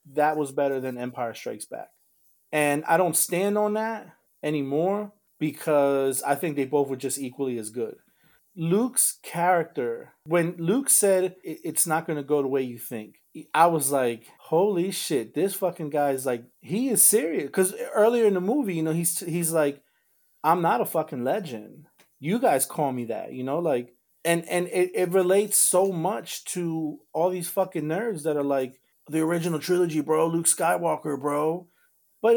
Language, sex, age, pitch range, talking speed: English, male, 30-49, 145-195 Hz, 180 wpm